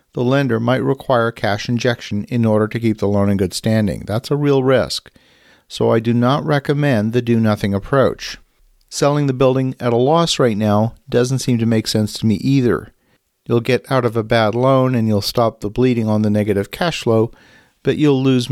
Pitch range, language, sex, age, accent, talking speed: 105-130 Hz, English, male, 50-69, American, 205 wpm